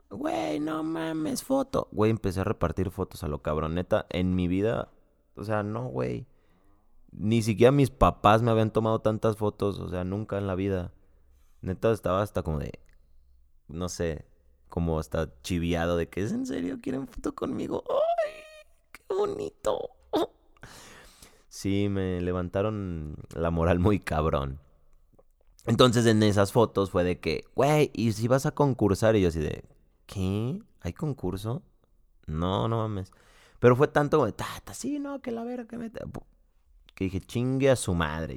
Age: 20-39